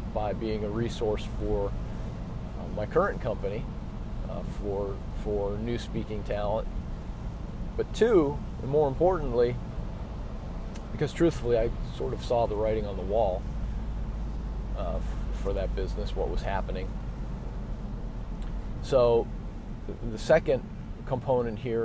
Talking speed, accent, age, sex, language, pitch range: 125 wpm, American, 40-59, male, English, 95-115 Hz